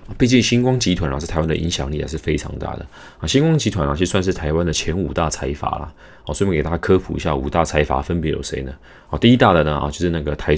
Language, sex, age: Chinese, male, 30-49